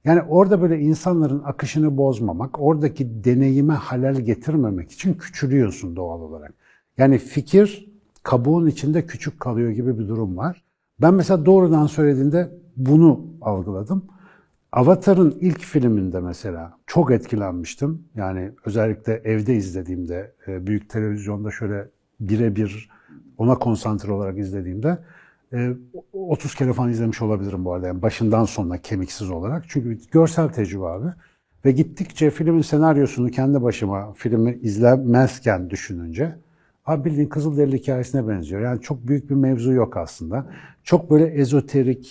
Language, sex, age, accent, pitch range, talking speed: Turkish, male, 60-79, native, 105-155 Hz, 125 wpm